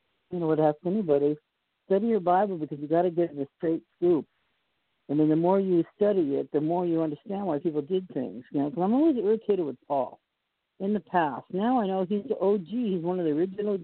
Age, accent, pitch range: 50-69, American, 145-195 Hz